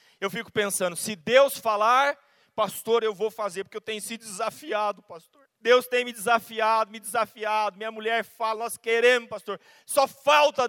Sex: male